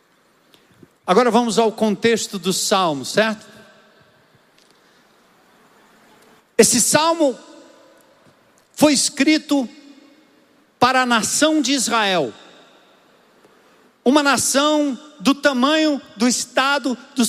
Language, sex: Portuguese, male